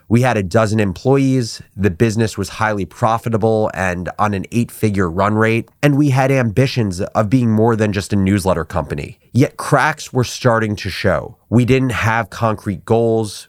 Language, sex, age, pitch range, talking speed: English, male, 30-49, 105-130 Hz, 175 wpm